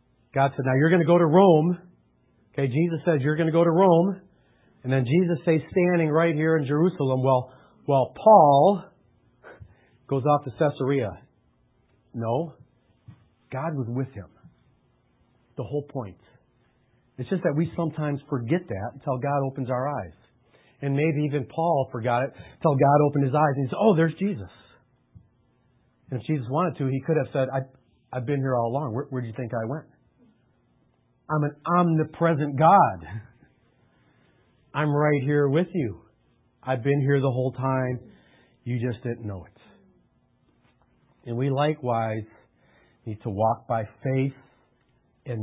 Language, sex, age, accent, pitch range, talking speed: English, male, 40-59, American, 120-150 Hz, 160 wpm